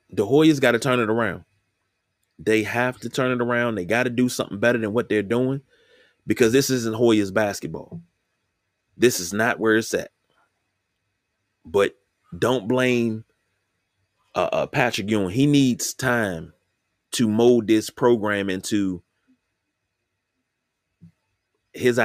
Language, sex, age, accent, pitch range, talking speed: English, male, 30-49, American, 95-120 Hz, 135 wpm